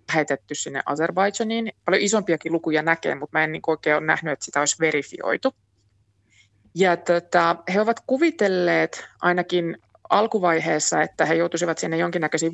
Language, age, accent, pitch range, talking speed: Finnish, 20-39, native, 155-190 Hz, 145 wpm